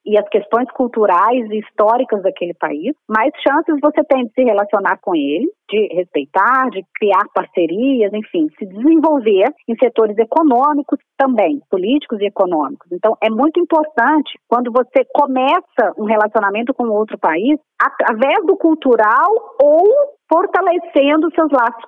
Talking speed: 140 wpm